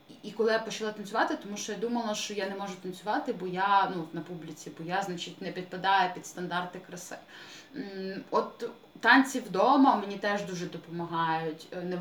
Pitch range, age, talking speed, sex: 175-210 Hz, 20-39, 170 wpm, female